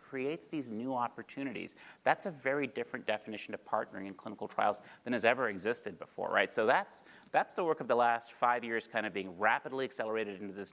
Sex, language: male, English